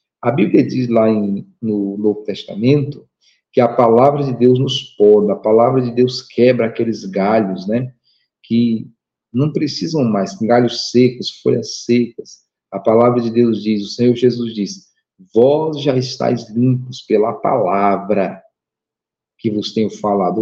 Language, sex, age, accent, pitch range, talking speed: Portuguese, male, 40-59, Brazilian, 110-130 Hz, 145 wpm